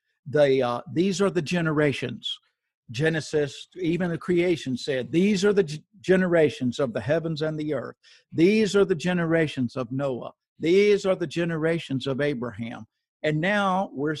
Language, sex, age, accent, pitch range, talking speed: English, male, 60-79, American, 130-175 Hz, 155 wpm